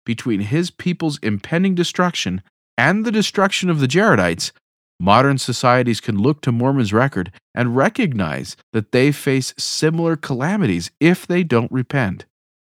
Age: 40-59